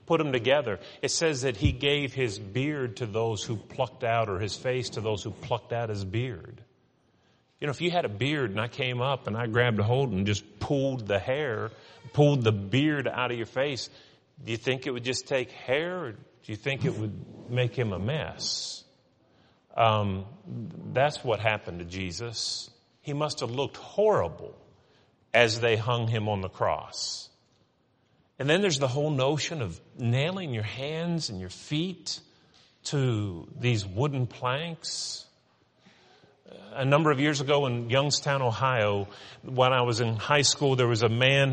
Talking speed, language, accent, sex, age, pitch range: 180 wpm, English, American, male, 40-59, 115-140 Hz